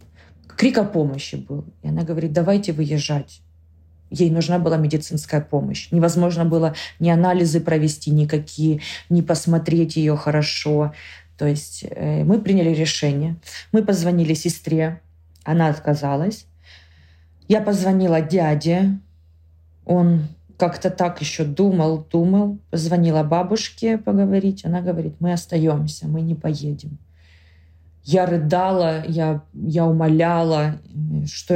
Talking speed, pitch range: 115 wpm, 145-180 Hz